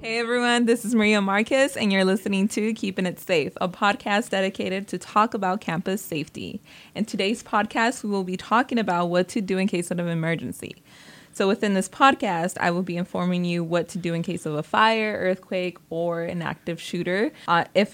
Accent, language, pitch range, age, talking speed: American, English, 175-220 Hz, 20-39, 205 wpm